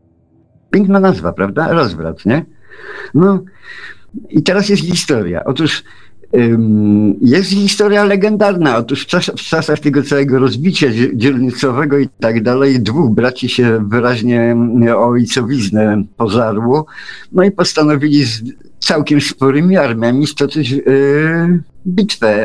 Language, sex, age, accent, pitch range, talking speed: Polish, male, 50-69, native, 115-165 Hz, 120 wpm